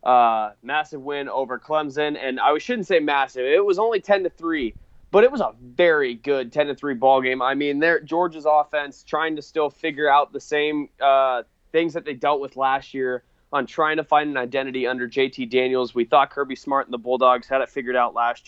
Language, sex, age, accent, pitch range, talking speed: English, male, 20-39, American, 125-150 Hz, 220 wpm